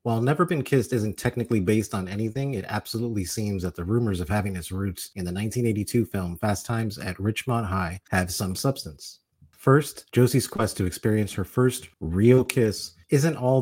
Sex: male